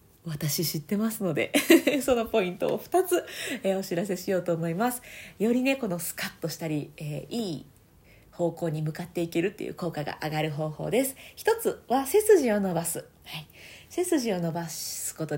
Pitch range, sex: 165-270 Hz, female